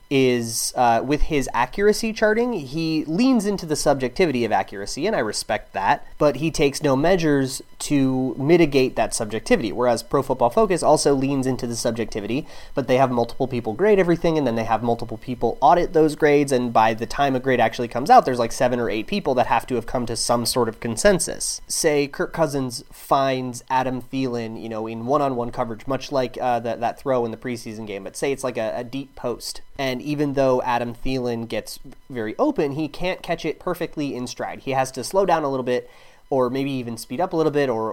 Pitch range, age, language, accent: 120-150 Hz, 30-49, English, American